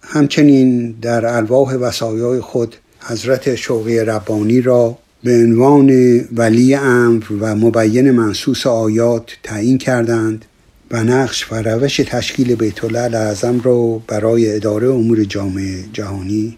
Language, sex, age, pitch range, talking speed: Persian, male, 60-79, 115-130 Hz, 115 wpm